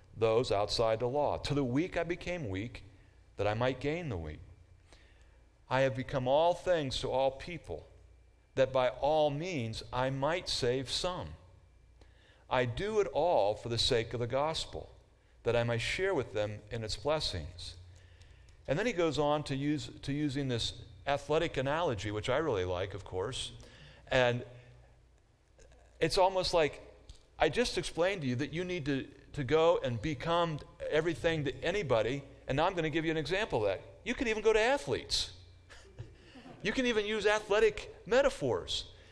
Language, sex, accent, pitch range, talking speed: English, male, American, 95-145 Hz, 170 wpm